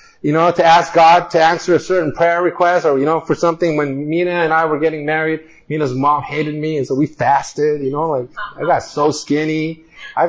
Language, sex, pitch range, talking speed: English, male, 150-210 Hz, 230 wpm